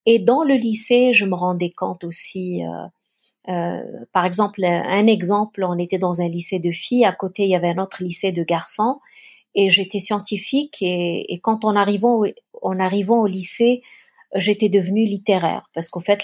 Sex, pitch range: female, 180-220 Hz